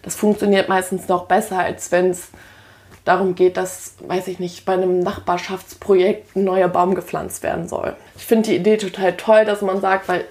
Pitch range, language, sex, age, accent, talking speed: 180-200 Hz, German, female, 20-39, German, 190 wpm